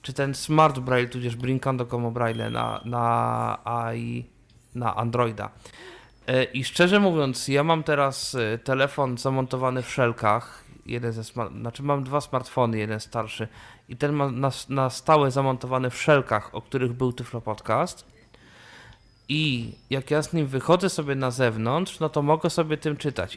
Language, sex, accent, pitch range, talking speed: Polish, male, native, 120-155 Hz, 155 wpm